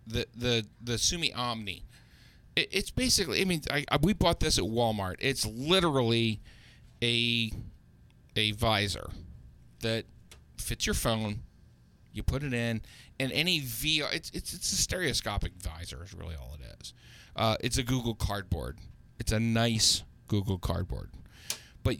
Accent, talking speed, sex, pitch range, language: American, 150 wpm, male, 100-130 Hz, English